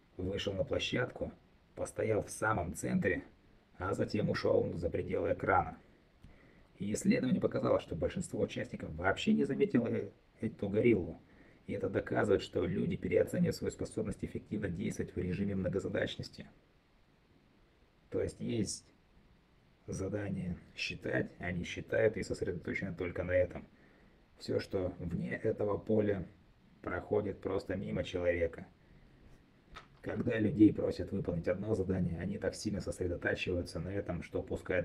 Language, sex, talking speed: Russian, male, 125 wpm